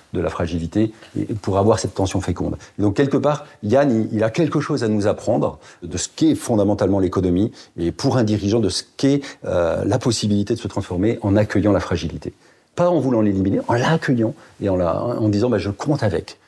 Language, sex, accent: French, male, French